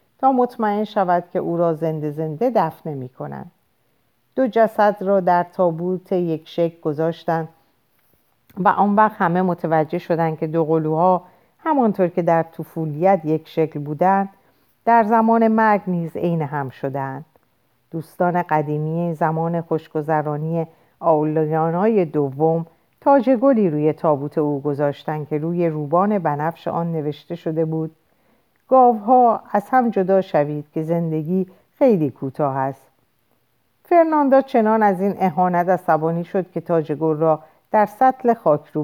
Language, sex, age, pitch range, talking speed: Persian, female, 50-69, 150-195 Hz, 130 wpm